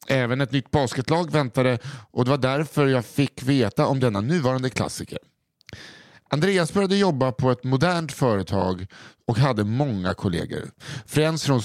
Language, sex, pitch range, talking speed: English, male, 120-160 Hz, 150 wpm